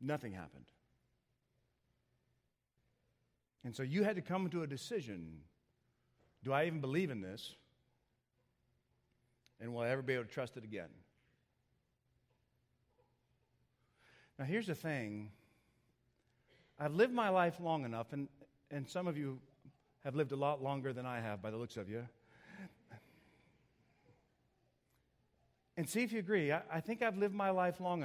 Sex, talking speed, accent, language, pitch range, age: male, 145 wpm, American, English, 125-170 Hz, 50-69